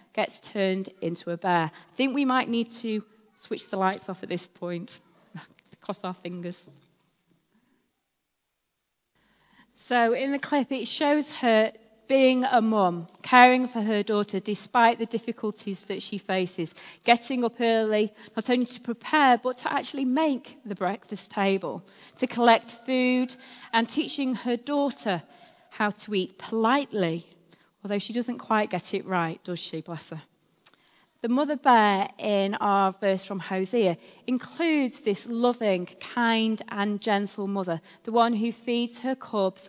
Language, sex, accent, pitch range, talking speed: English, female, British, 195-255 Hz, 150 wpm